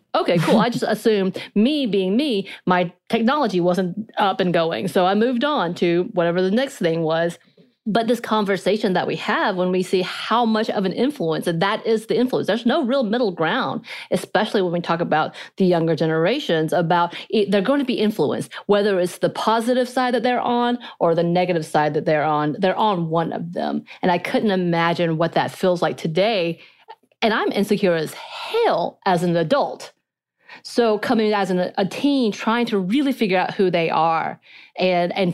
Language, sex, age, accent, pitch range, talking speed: English, female, 30-49, American, 170-210 Hz, 195 wpm